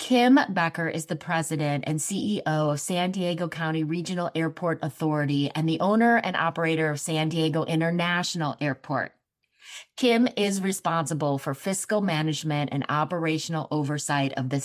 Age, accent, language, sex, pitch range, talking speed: 30-49, American, English, female, 155-190 Hz, 145 wpm